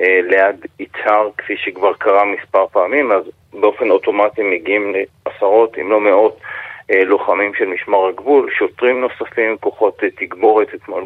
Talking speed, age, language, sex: 130 wpm, 40-59, Hebrew, male